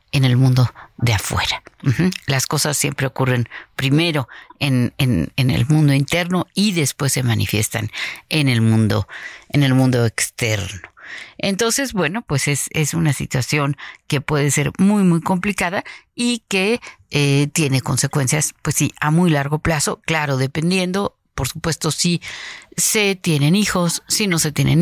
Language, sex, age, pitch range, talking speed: Spanish, female, 50-69, 140-200 Hz, 155 wpm